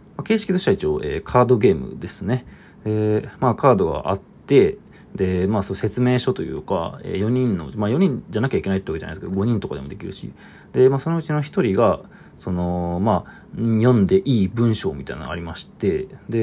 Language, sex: Japanese, male